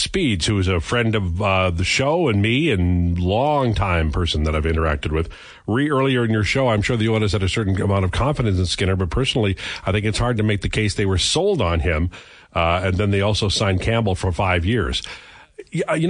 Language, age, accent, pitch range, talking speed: English, 50-69, American, 90-115 Hz, 230 wpm